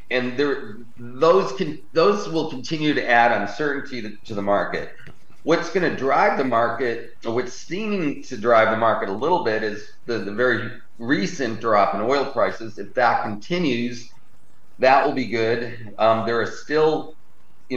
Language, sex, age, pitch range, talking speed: English, male, 40-59, 110-135 Hz, 165 wpm